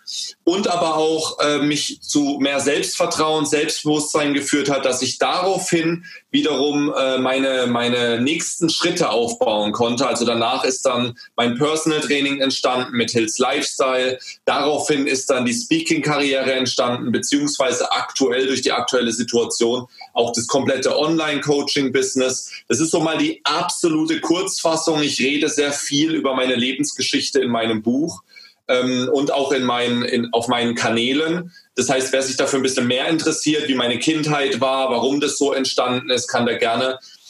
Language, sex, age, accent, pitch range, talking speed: German, male, 30-49, German, 125-165 Hz, 155 wpm